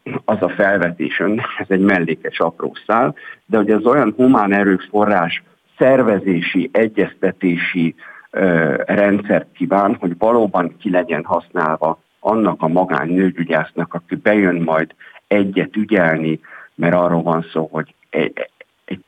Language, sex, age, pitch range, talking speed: Hungarian, male, 60-79, 85-105 Hz, 125 wpm